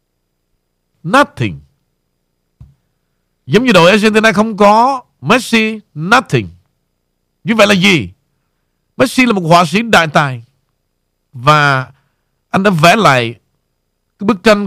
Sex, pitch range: male, 135-220 Hz